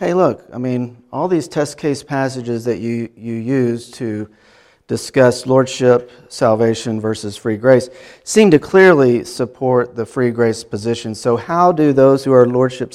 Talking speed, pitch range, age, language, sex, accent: 160 wpm, 120-150 Hz, 40-59, English, male, American